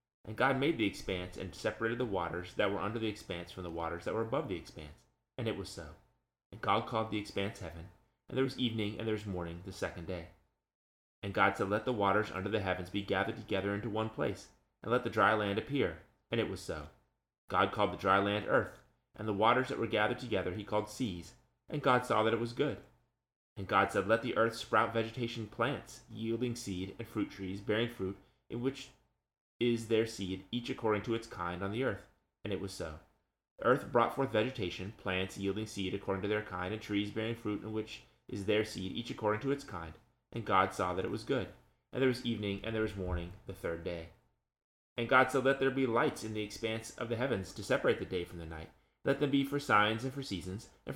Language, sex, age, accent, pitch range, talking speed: English, male, 30-49, American, 95-115 Hz, 230 wpm